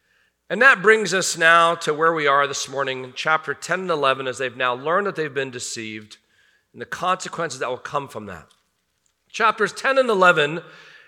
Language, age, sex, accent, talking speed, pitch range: English, 40-59, male, American, 190 wpm, 135-210 Hz